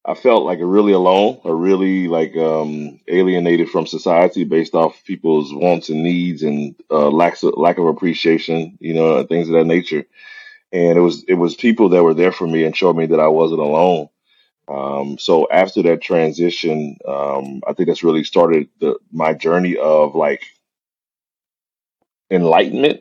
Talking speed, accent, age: 170 wpm, American, 30-49